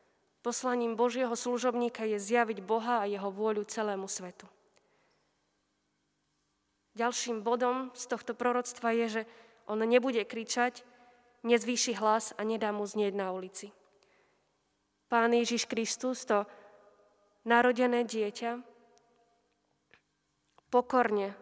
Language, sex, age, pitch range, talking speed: Slovak, female, 20-39, 210-235 Hz, 100 wpm